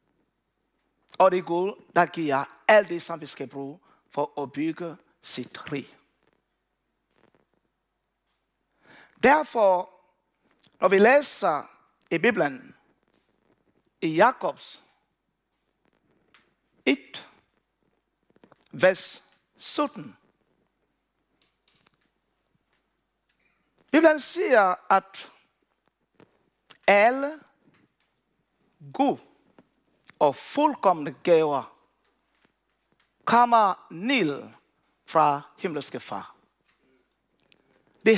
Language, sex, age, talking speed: Danish, male, 60-79, 55 wpm